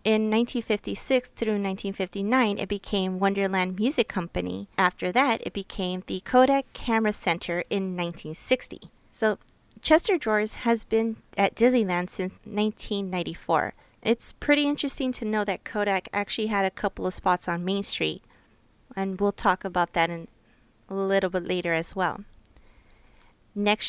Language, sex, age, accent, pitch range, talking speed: English, female, 30-49, American, 185-235 Hz, 145 wpm